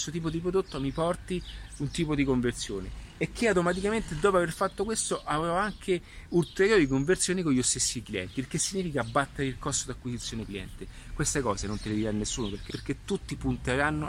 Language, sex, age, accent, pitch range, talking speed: Italian, male, 30-49, native, 105-140 Hz, 185 wpm